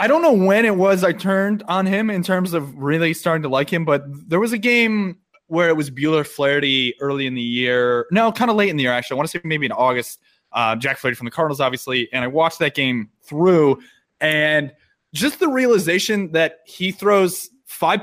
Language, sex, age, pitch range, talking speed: English, male, 20-39, 135-190 Hz, 225 wpm